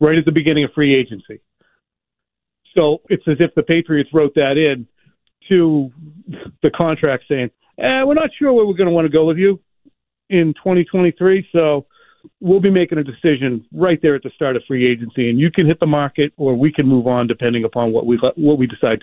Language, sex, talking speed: English, male, 210 wpm